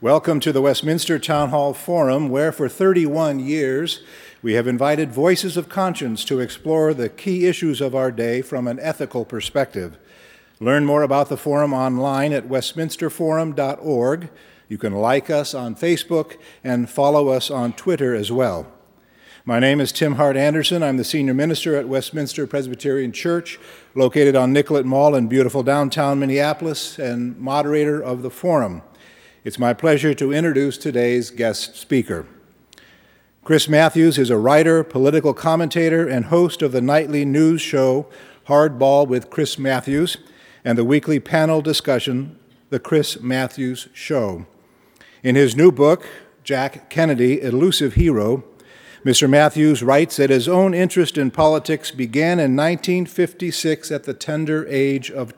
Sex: male